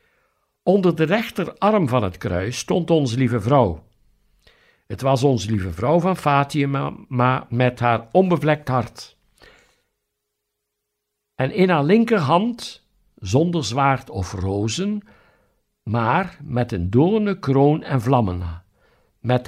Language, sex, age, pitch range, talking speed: Dutch, male, 60-79, 110-165 Hz, 115 wpm